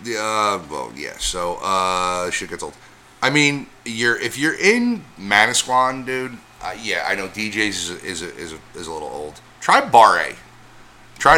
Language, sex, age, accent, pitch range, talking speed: English, male, 30-49, American, 90-115 Hz, 180 wpm